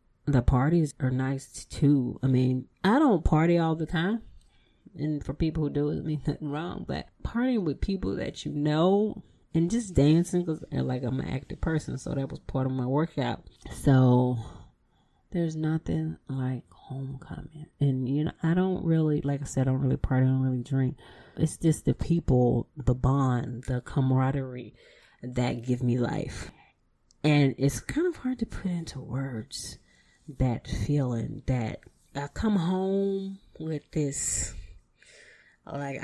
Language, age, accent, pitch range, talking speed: English, 30-49, American, 125-155 Hz, 165 wpm